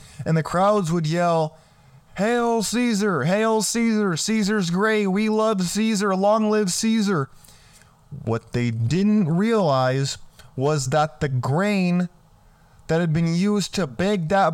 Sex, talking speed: male, 130 wpm